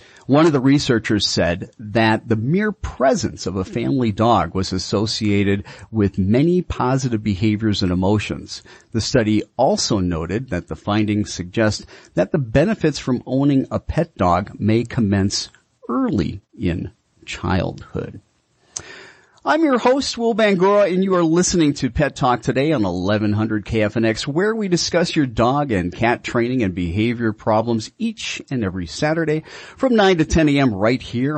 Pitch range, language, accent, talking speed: 105-155 Hz, English, American, 155 wpm